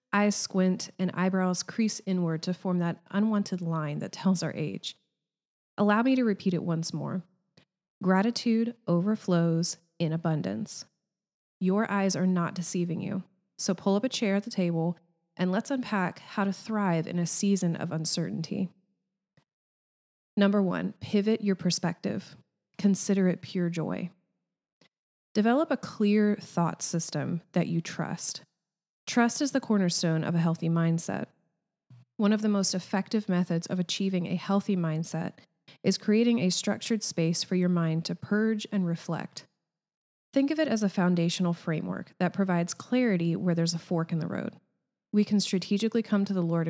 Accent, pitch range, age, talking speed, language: American, 170-205 Hz, 30-49, 160 wpm, English